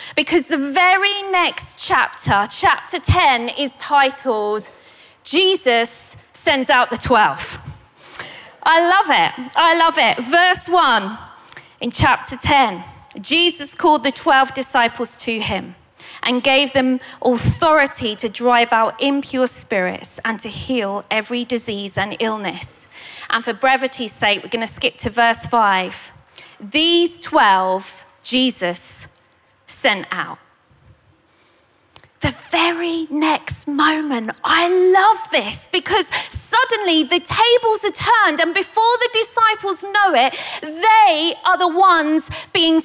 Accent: British